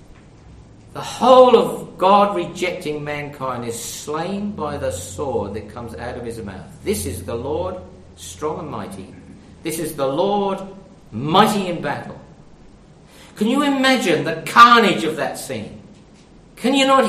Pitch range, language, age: 110-175 Hz, English, 50-69